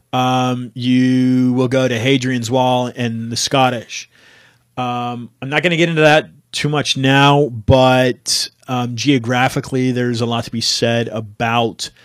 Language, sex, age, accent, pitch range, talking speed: English, male, 30-49, American, 115-130 Hz, 155 wpm